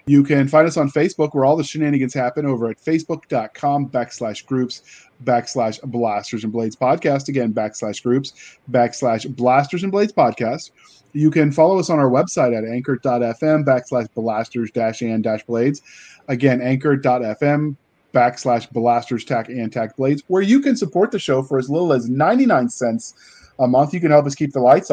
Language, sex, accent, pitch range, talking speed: English, male, American, 125-160 Hz, 175 wpm